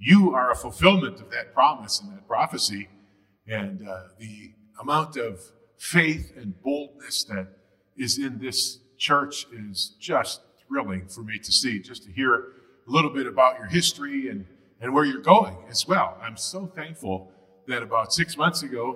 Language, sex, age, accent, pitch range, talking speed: English, male, 40-59, American, 100-170 Hz, 170 wpm